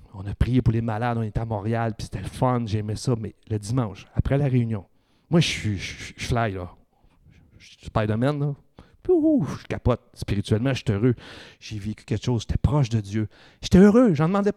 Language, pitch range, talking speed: French, 100-135 Hz, 225 wpm